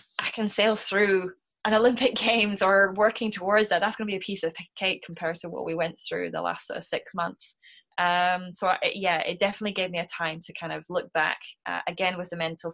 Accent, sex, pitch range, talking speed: British, female, 165-190 Hz, 215 wpm